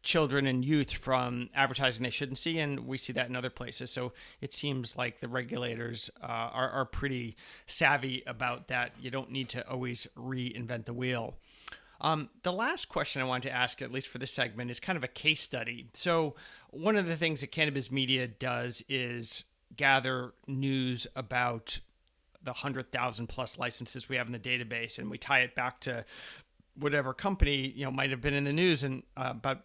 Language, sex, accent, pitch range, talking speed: English, male, American, 125-145 Hz, 195 wpm